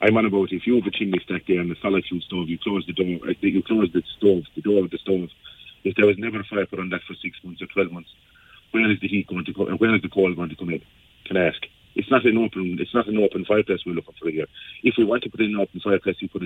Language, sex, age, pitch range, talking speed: English, male, 40-59, 95-115 Hz, 320 wpm